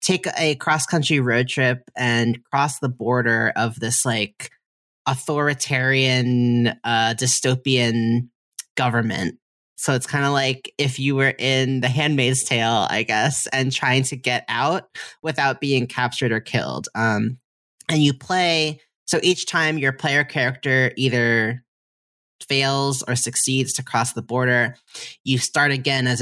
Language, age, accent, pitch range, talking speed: English, 20-39, American, 120-140 Hz, 140 wpm